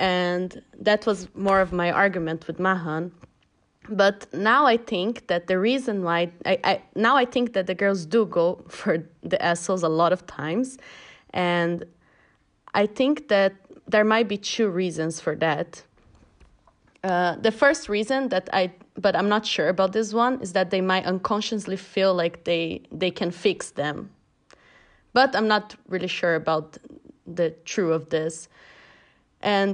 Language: English